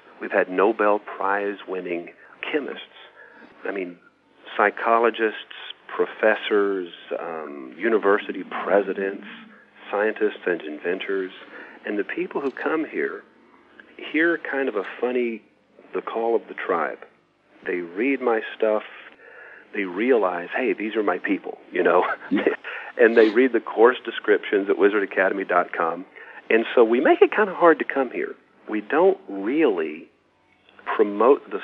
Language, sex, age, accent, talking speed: English, male, 40-59, American, 130 wpm